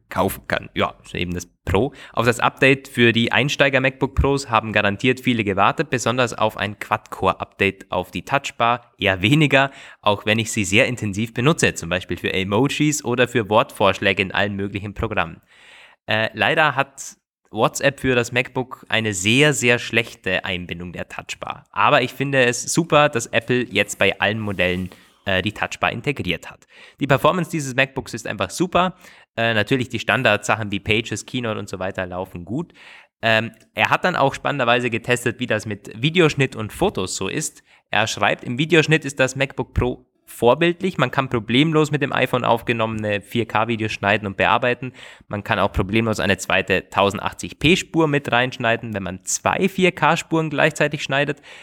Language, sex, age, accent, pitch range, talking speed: German, male, 20-39, German, 105-135 Hz, 165 wpm